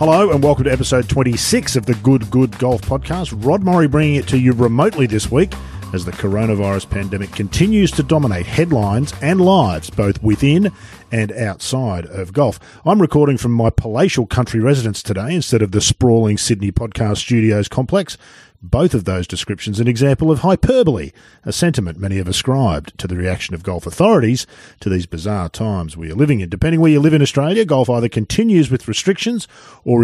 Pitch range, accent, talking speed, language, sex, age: 100-140 Hz, Australian, 185 wpm, English, male, 40-59